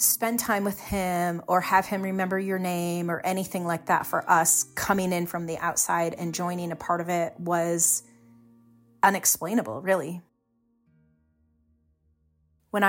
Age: 30-49